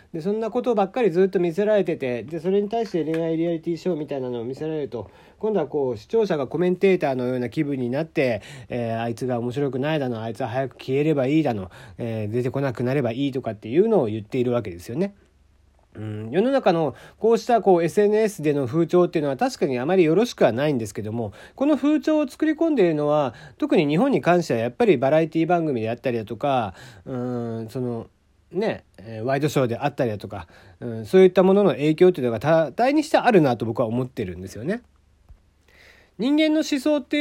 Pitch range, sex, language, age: 120-195 Hz, male, Japanese, 40-59